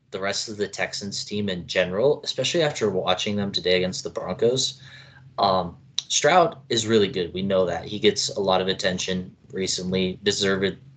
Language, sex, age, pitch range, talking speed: English, male, 20-39, 95-130 Hz, 175 wpm